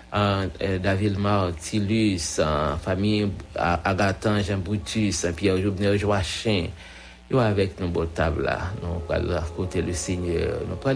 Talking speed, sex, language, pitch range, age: 110 wpm, male, English, 90-100 Hz, 60-79